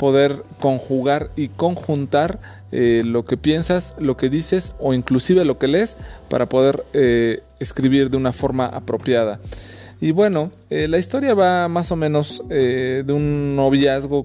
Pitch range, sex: 125-145 Hz, male